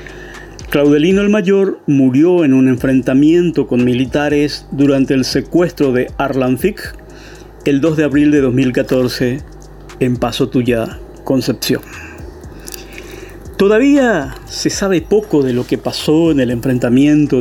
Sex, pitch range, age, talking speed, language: male, 130-160 Hz, 50-69, 120 wpm, Spanish